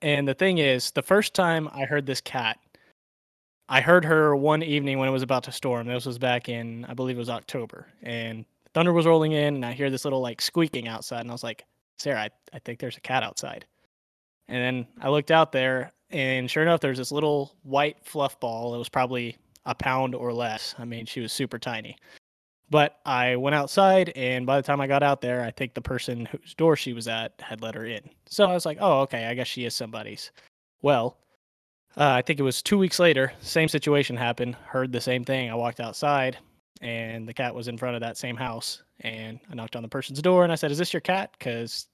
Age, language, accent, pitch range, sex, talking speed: 20-39, English, American, 120-145 Hz, male, 235 wpm